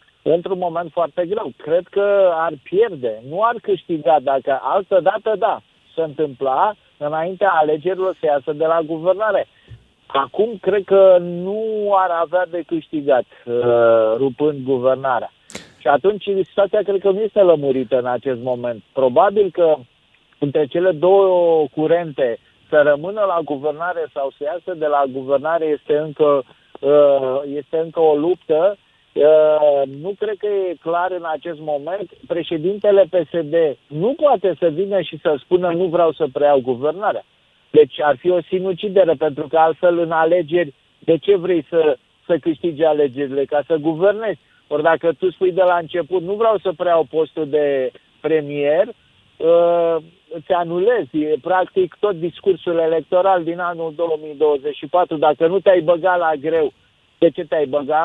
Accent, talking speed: native, 150 wpm